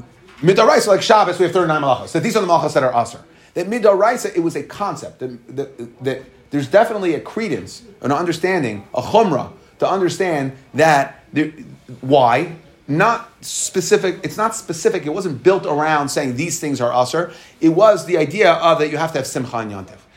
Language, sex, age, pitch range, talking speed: English, male, 30-49, 135-180 Hz, 195 wpm